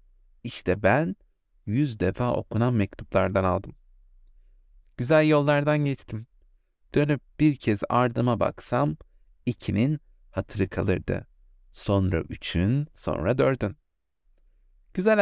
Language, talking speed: Turkish, 90 wpm